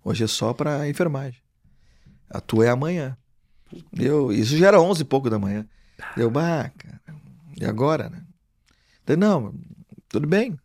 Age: 40-59